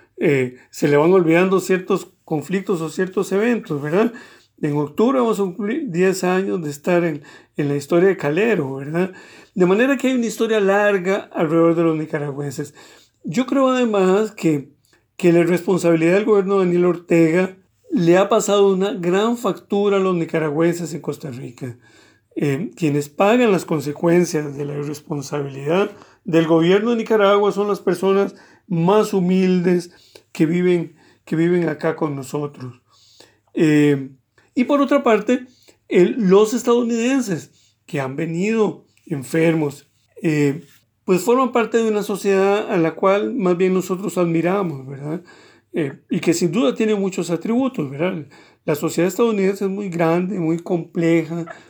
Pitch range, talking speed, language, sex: 155-200 Hz, 150 wpm, Spanish, male